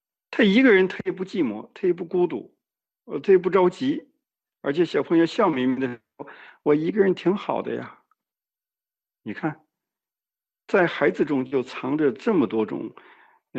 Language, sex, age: Chinese, male, 50-69